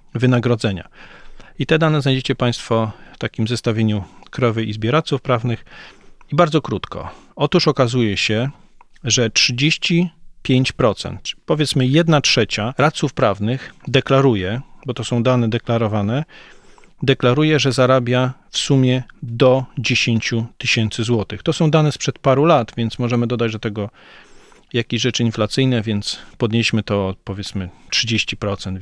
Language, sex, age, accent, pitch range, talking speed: Polish, male, 40-59, native, 115-140 Hz, 125 wpm